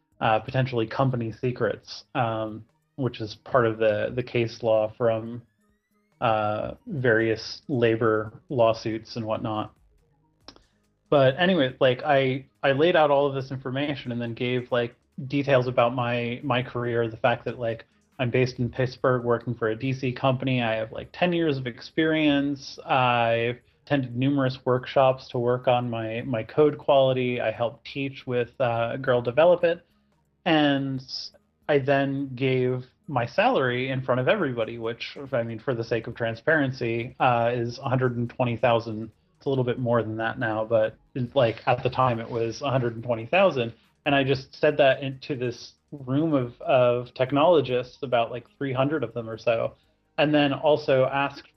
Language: English